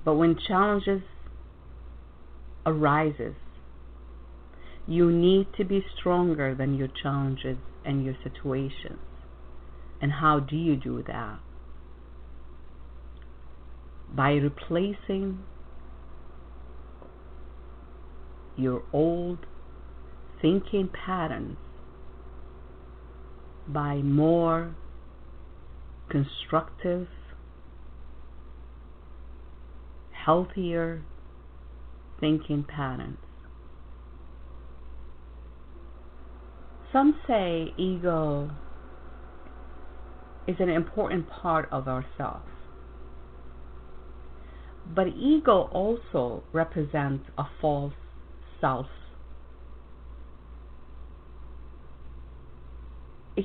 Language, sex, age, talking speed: English, female, 50-69, 55 wpm